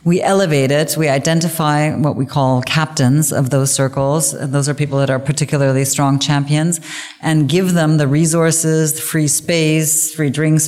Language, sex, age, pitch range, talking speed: English, female, 30-49, 140-165 Hz, 165 wpm